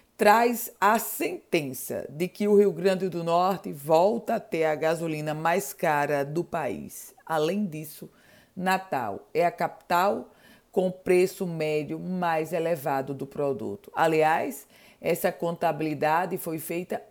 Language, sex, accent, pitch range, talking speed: Portuguese, female, Brazilian, 155-190 Hz, 130 wpm